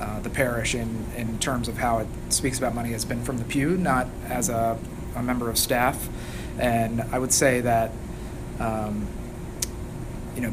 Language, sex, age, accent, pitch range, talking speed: English, male, 30-49, American, 115-125 Hz, 180 wpm